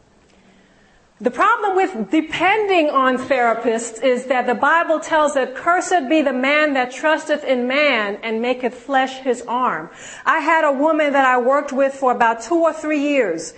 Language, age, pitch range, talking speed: English, 40-59, 245-305 Hz, 170 wpm